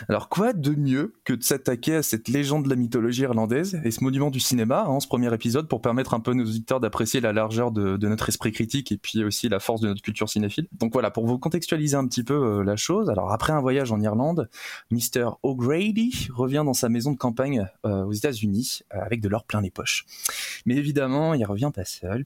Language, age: French, 20-39